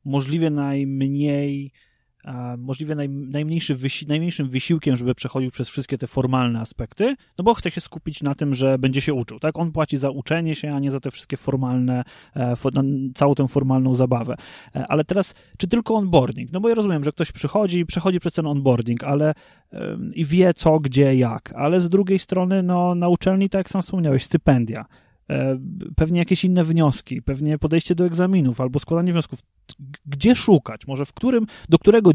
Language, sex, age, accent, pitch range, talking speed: Polish, male, 20-39, native, 135-175 Hz, 175 wpm